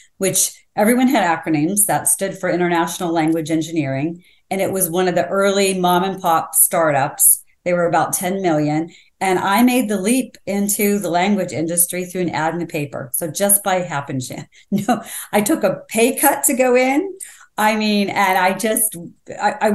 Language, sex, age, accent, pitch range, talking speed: English, female, 40-59, American, 170-205 Hz, 180 wpm